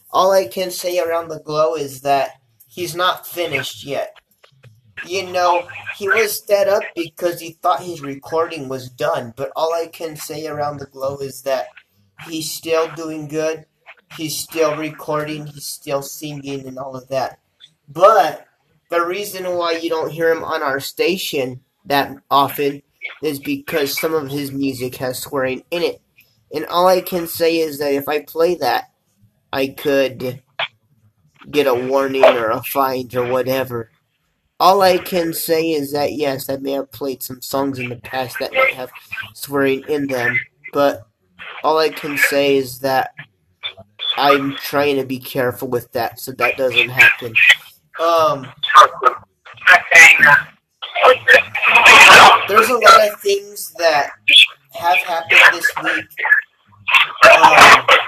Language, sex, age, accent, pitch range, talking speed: English, male, 30-49, American, 135-165 Hz, 150 wpm